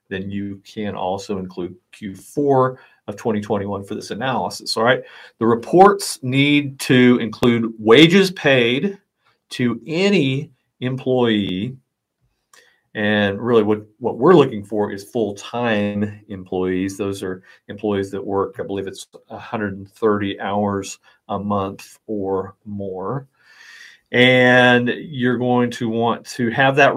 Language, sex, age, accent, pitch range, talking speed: English, male, 40-59, American, 105-125 Hz, 125 wpm